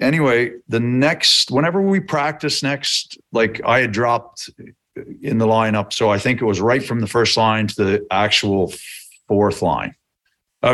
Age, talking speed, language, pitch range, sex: 40-59, 170 wpm, English, 110-130 Hz, male